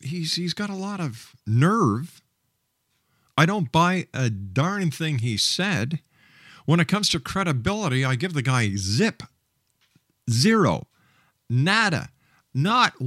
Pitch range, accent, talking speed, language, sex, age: 125-180 Hz, American, 130 wpm, English, male, 50-69